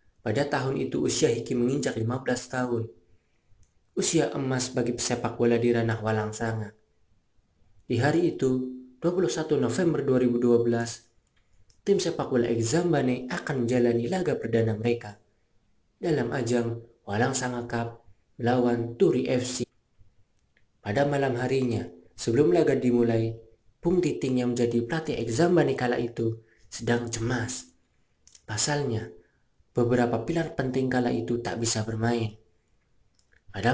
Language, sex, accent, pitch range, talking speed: Indonesian, male, native, 110-125 Hz, 115 wpm